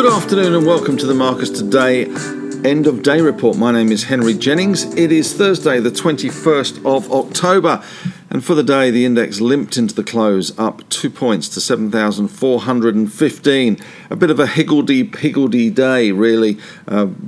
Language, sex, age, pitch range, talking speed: English, male, 50-69, 110-145 Hz, 165 wpm